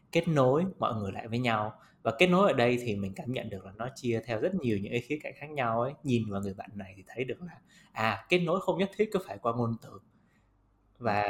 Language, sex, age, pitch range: Vietnamese, male, 20-39, 105-130 Hz